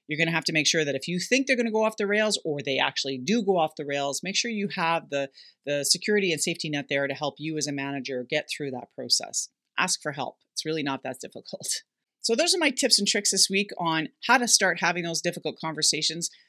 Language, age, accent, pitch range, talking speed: English, 40-59, American, 160-215 Hz, 260 wpm